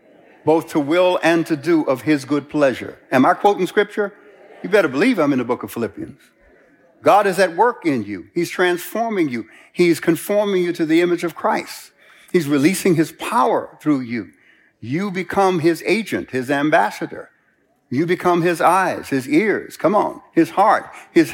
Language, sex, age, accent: English, male, 60-79, American